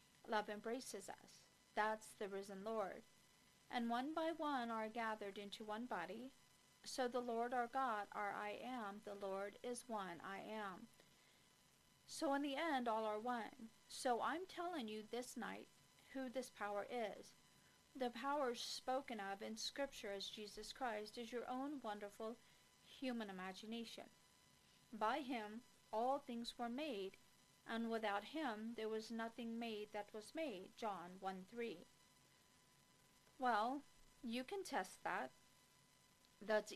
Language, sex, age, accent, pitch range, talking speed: English, female, 50-69, American, 215-255 Hz, 140 wpm